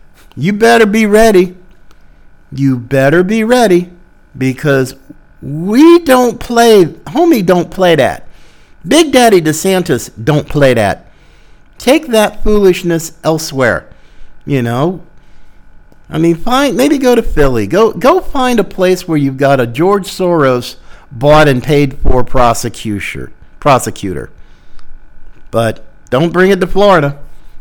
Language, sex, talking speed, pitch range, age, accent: English, male, 125 wpm, 135-205 Hz, 50-69, American